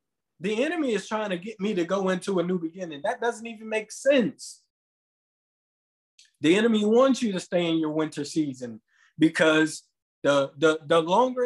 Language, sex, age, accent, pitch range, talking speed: English, male, 20-39, American, 150-215 Hz, 170 wpm